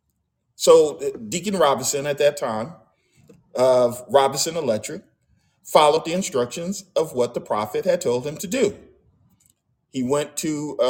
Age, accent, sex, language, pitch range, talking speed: 40-59, American, male, English, 120-195 Hz, 140 wpm